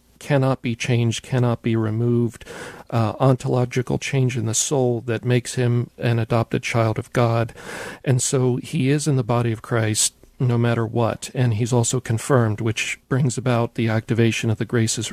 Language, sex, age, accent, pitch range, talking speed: English, male, 40-59, American, 115-135 Hz, 175 wpm